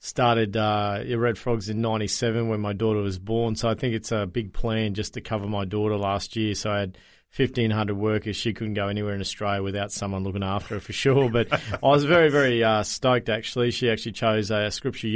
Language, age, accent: English, 40-59, Australian